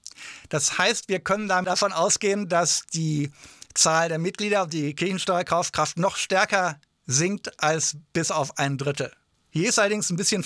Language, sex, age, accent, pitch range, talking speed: English, male, 50-69, German, 155-190 Hz, 155 wpm